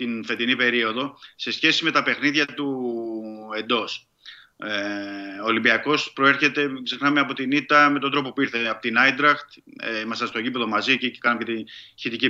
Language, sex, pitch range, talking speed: Greek, male, 120-155 Hz, 180 wpm